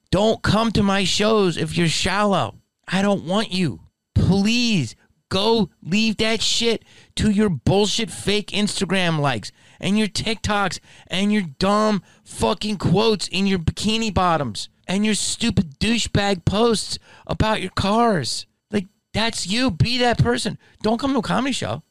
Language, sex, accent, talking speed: English, male, American, 150 wpm